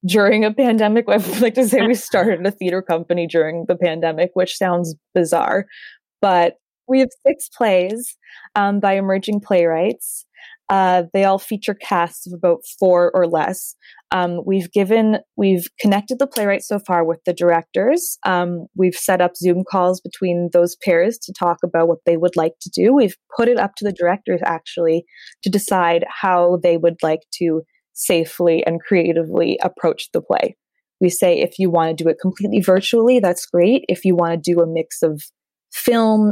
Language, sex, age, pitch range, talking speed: English, female, 20-39, 170-205 Hz, 180 wpm